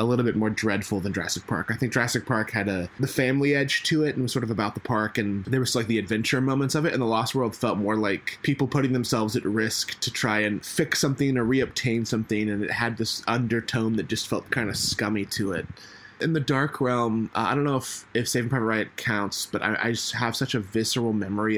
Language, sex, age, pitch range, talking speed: English, male, 20-39, 100-125 Hz, 255 wpm